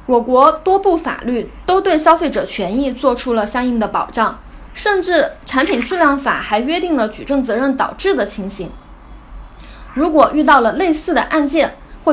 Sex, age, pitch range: female, 20-39, 230-315 Hz